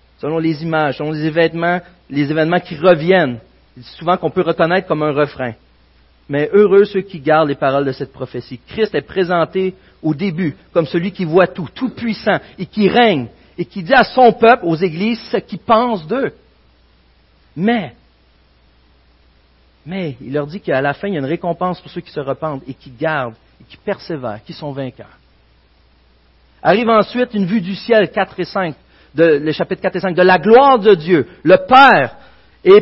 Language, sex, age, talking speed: French, male, 50-69, 190 wpm